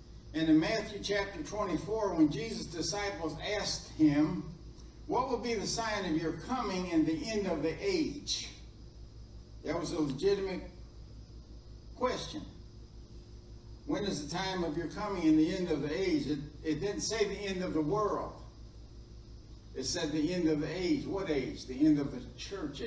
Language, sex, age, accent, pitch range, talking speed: English, male, 60-79, American, 155-200 Hz, 170 wpm